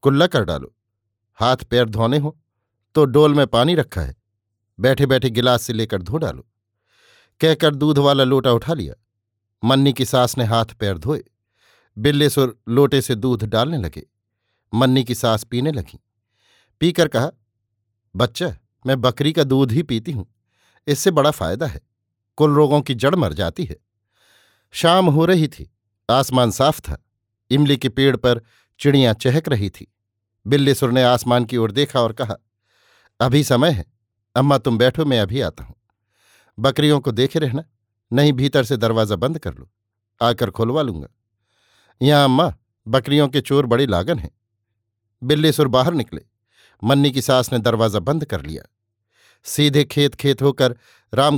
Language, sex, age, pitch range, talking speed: Hindi, male, 50-69, 105-140 Hz, 160 wpm